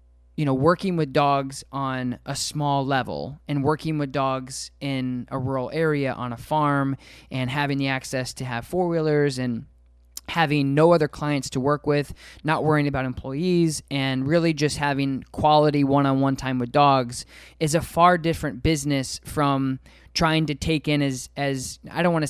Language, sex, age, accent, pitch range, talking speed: English, male, 20-39, American, 130-155 Hz, 170 wpm